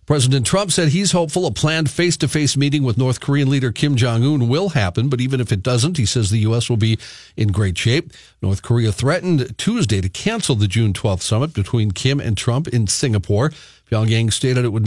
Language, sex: English, male